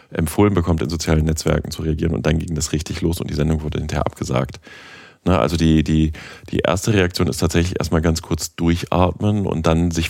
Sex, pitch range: male, 80-90 Hz